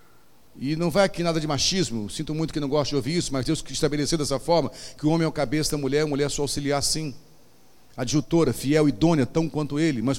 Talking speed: 235 wpm